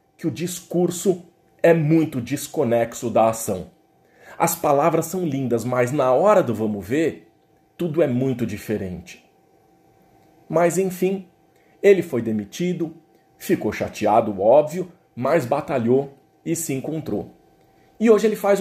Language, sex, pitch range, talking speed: Portuguese, male, 135-185 Hz, 125 wpm